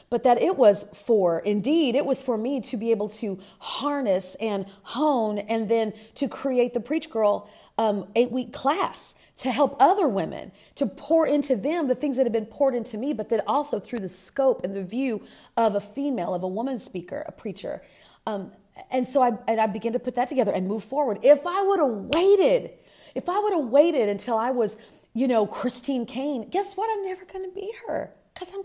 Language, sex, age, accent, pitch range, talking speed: English, female, 40-59, American, 220-290 Hz, 210 wpm